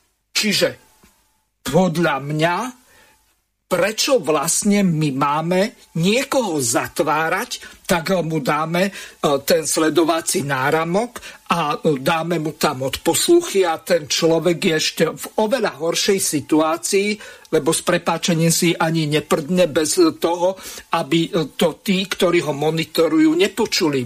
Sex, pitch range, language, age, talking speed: male, 160-205 Hz, Slovak, 50-69, 110 wpm